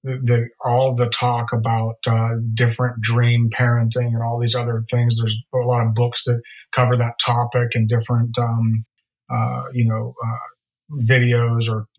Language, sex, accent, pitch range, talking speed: English, male, American, 115-125 Hz, 160 wpm